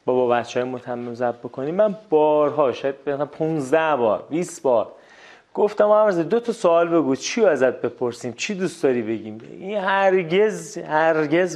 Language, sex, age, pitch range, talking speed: Persian, male, 30-49, 125-170 Hz, 150 wpm